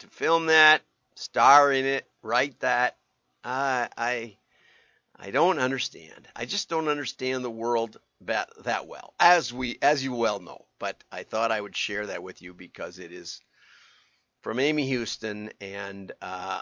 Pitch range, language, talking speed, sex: 105-140 Hz, English, 165 wpm, male